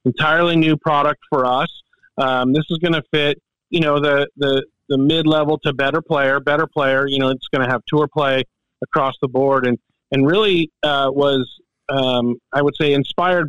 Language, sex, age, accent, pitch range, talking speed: English, male, 40-59, American, 130-160 Hz, 195 wpm